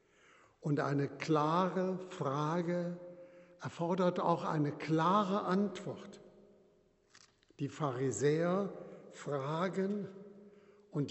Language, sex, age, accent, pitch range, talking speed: German, male, 60-79, German, 165-200 Hz, 70 wpm